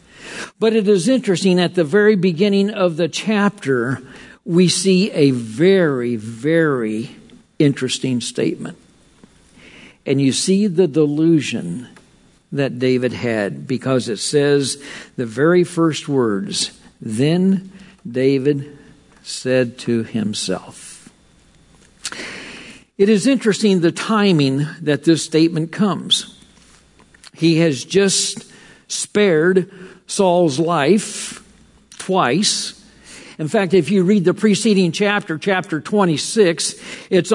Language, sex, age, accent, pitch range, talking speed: English, male, 60-79, American, 145-200 Hz, 105 wpm